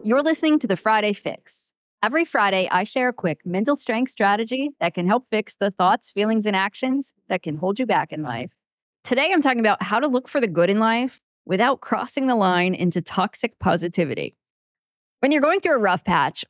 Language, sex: English, female